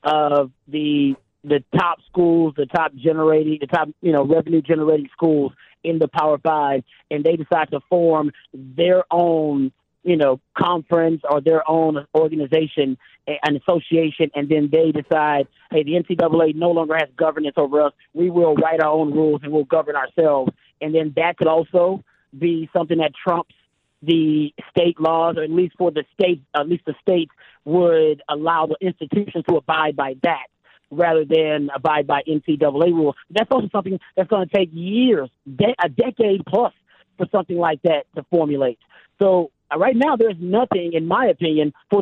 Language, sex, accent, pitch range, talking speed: English, male, American, 150-175 Hz, 175 wpm